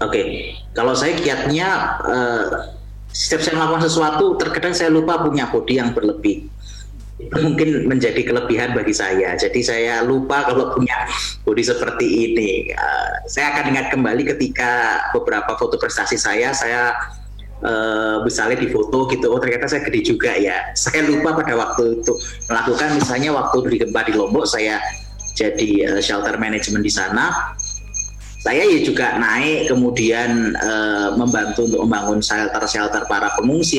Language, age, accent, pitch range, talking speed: Indonesian, 30-49, native, 115-170 Hz, 145 wpm